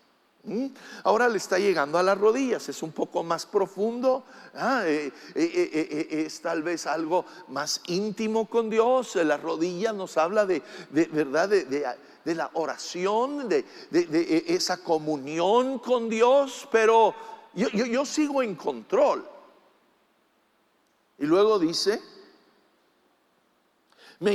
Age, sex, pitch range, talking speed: 50-69, male, 160-235 Hz, 135 wpm